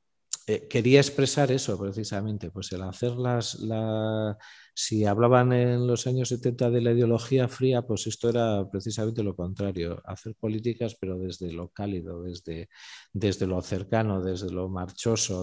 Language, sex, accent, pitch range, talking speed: Spanish, male, Spanish, 100-120 Hz, 145 wpm